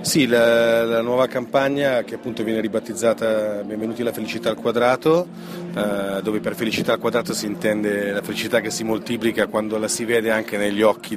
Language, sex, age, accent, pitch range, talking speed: Italian, male, 30-49, native, 105-120 Hz, 185 wpm